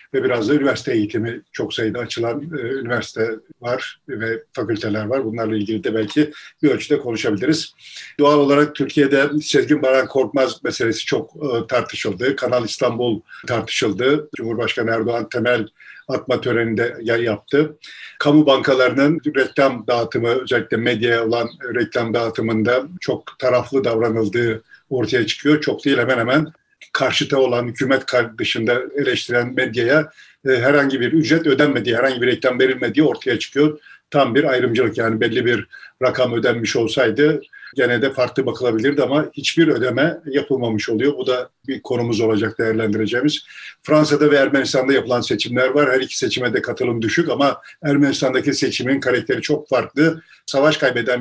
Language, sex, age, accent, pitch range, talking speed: Turkish, male, 50-69, native, 120-145 Hz, 140 wpm